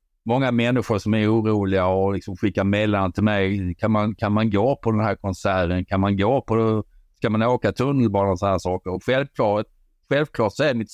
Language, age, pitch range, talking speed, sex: Swedish, 50-69, 95-125 Hz, 195 wpm, male